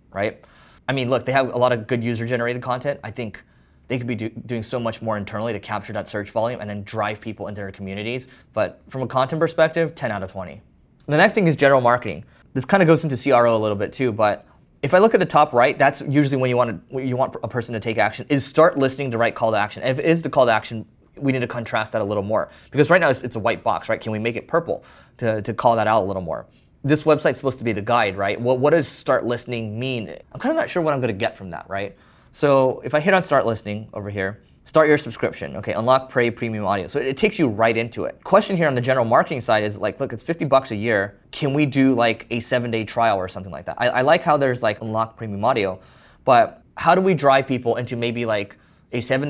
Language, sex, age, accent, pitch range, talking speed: English, male, 20-39, American, 110-135 Hz, 275 wpm